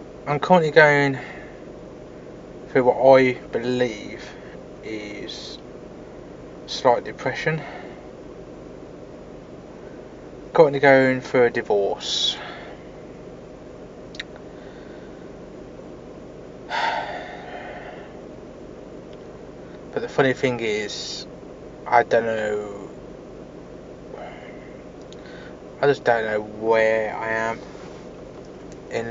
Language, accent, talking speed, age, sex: English, British, 65 wpm, 20-39, male